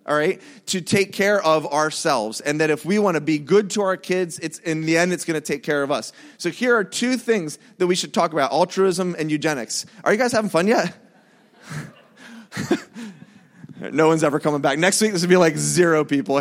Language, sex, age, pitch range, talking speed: English, male, 30-49, 170-235 Hz, 225 wpm